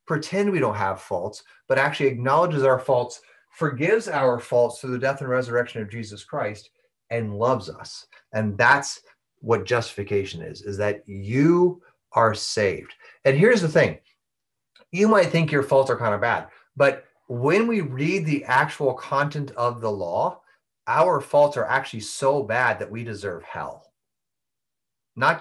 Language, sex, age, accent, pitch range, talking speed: English, male, 30-49, American, 115-160 Hz, 160 wpm